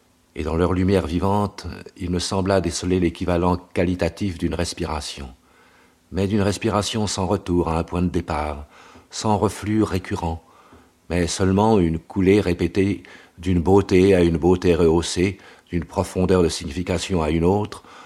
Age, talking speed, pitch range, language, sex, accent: 50-69, 145 wpm, 85-95 Hz, French, male, French